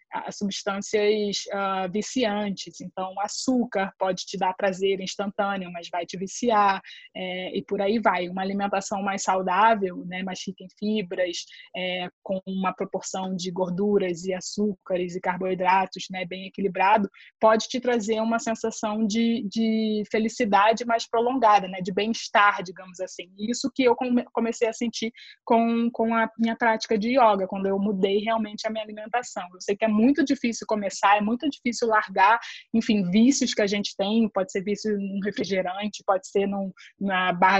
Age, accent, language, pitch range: 20-39, Brazilian, Portuguese, 195-225 Hz